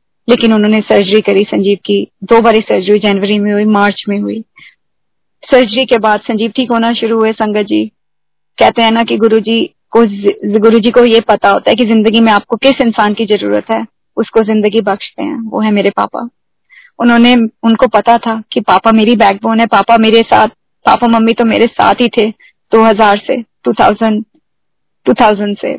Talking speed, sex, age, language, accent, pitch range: 180 wpm, female, 20-39, Hindi, native, 220-265 Hz